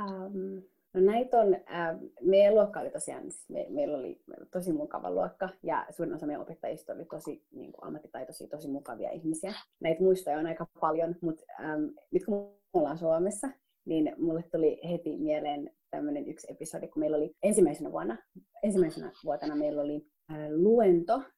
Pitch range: 160-260 Hz